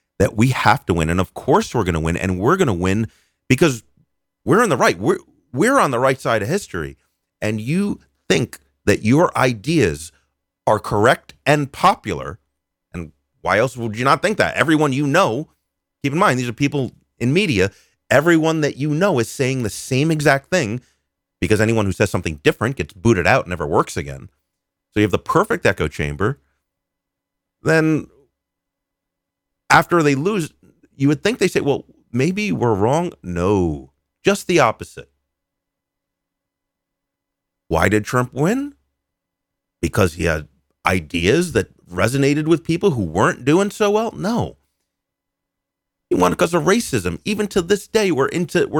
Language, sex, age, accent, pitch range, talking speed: English, male, 30-49, American, 90-150 Hz, 165 wpm